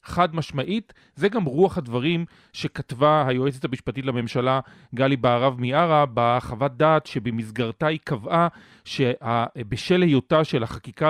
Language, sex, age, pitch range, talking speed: Hebrew, male, 40-59, 130-180 Hz, 120 wpm